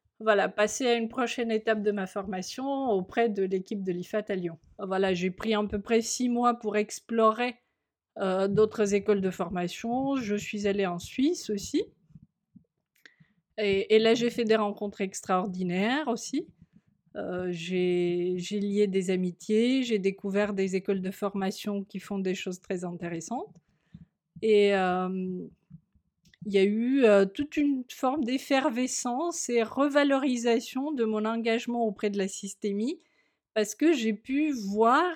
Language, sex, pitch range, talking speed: French, female, 195-250 Hz, 150 wpm